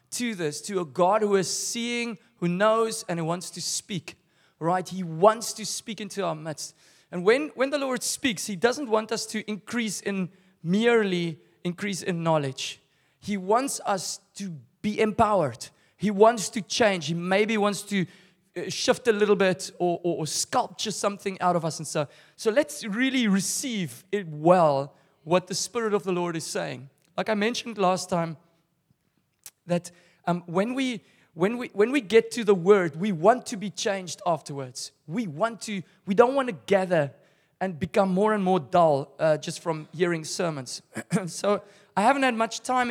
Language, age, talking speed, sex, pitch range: English, 30-49, 185 wpm, male, 170-220 Hz